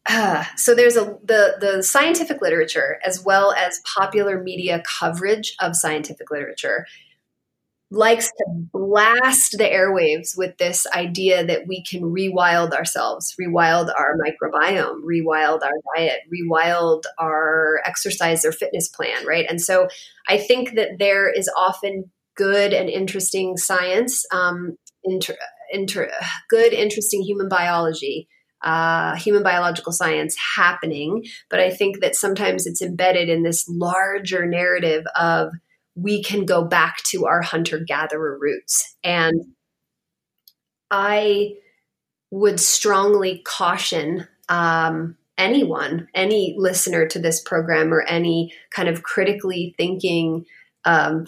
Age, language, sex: 30-49, English, female